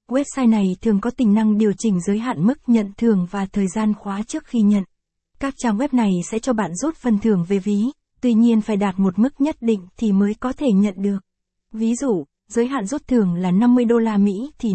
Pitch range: 200-240 Hz